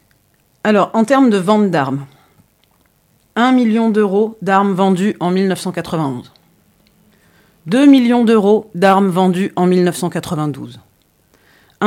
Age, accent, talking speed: 40-59, French, 100 wpm